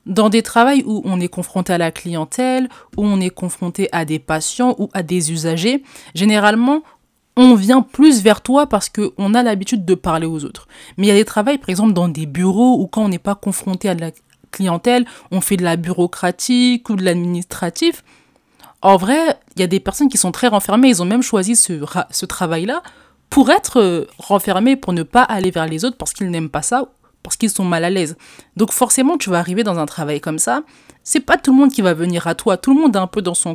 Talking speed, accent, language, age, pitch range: 235 wpm, French, French, 20-39, 175-245 Hz